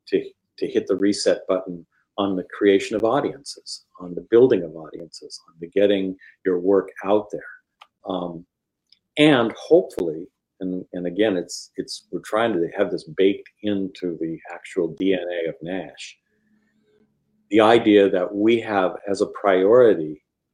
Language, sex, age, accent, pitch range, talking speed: English, male, 50-69, American, 90-125 Hz, 150 wpm